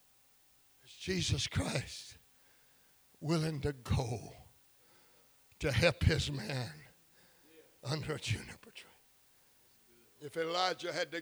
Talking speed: 90 wpm